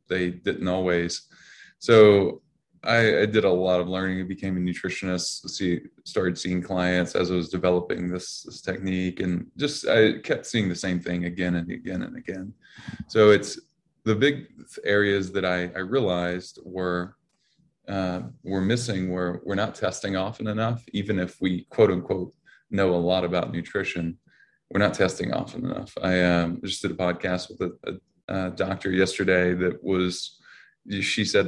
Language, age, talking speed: English, 20-39, 170 wpm